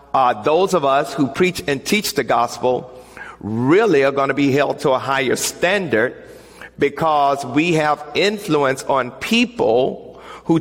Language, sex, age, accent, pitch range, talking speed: English, male, 50-69, American, 140-180 Hz, 155 wpm